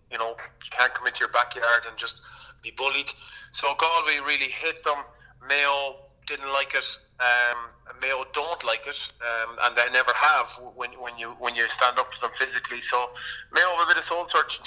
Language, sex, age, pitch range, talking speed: English, male, 30-49, 120-135 Hz, 200 wpm